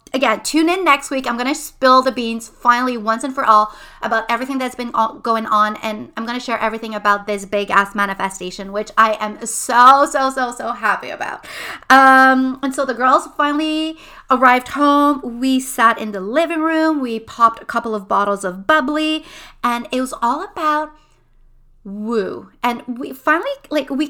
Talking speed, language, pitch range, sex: 185 wpm, English, 225-280 Hz, female